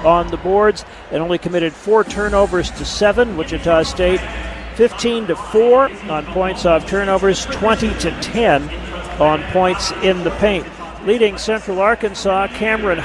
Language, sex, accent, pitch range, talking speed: English, male, American, 170-210 Hz, 145 wpm